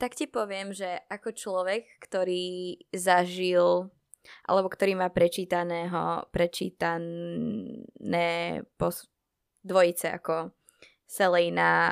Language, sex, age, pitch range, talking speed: Slovak, female, 20-39, 175-240 Hz, 80 wpm